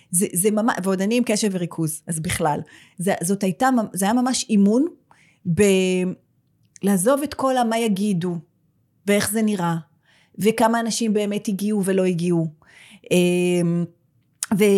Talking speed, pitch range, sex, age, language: 120 wpm, 180-245 Hz, female, 30-49, Hebrew